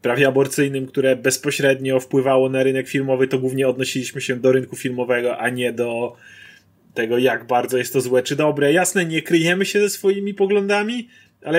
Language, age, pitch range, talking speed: Polish, 30-49, 130-175 Hz, 175 wpm